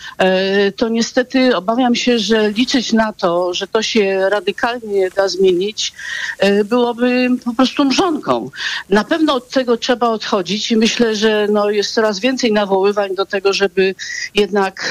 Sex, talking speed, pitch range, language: female, 145 wpm, 185-235 Hz, Polish